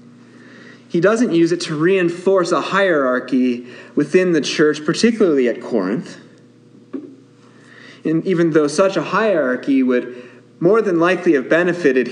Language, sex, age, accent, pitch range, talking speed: English, male, 30-49, American, 150-195 Hz, 130 wpm